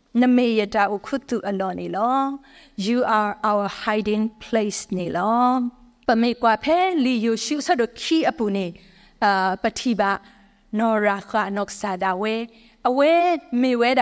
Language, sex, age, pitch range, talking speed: English, female, 30-49, 210-255 Hz, 135 wpm